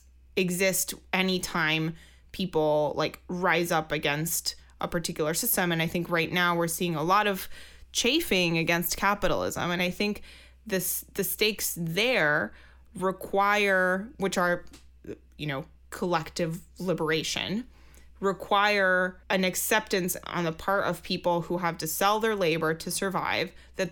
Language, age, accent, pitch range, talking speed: English, 20-39, American, 170-200 Hz, 140 wpm